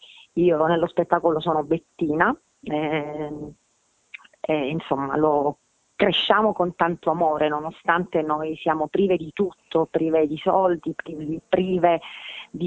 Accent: native